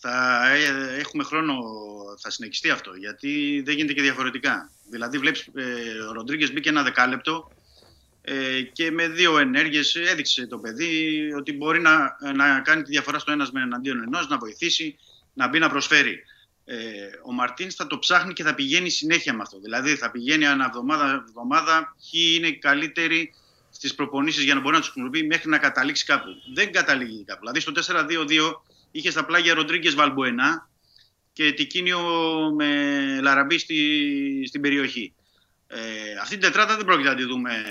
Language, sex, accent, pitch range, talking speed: Greek, male, native, 125-160 Hz, 160 wpm